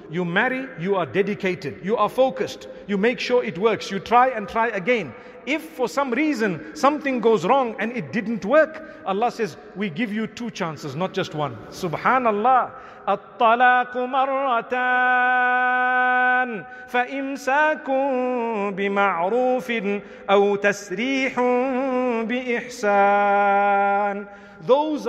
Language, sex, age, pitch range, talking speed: English, male, 50-69, 200-255 Hz, 105 wpm